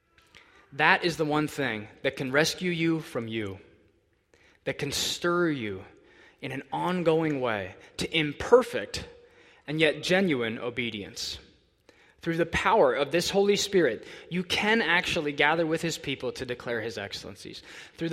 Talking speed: 145 wpm